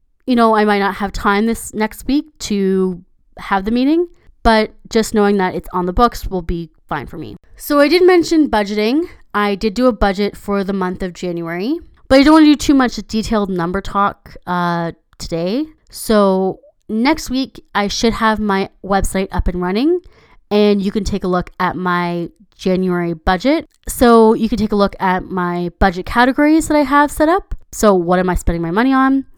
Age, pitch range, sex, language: 20-39, 185-235 Hz, female, English